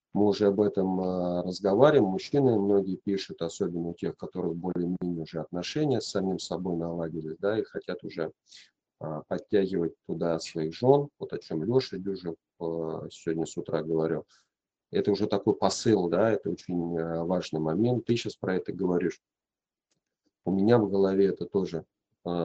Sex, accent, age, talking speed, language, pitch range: male, native, 40-59, 165 wpm, Russian, 85-105 Hz